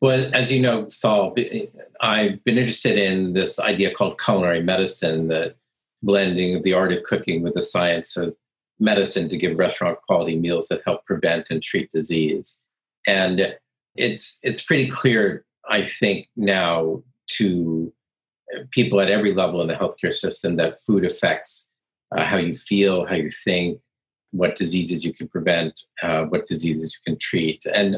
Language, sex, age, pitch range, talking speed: English, male, 50-69, 85-105 Hz, 165 wpm